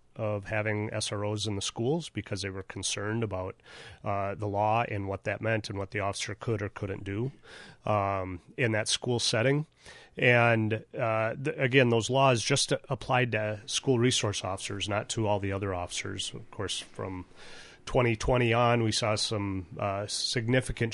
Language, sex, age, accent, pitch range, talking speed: English, male, 30-49, American, 100-120 Hz, 170 wpm